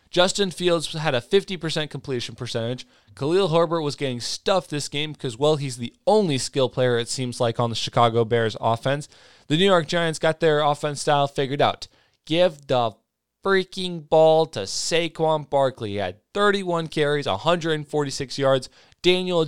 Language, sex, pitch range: English, male, 120-165 Hz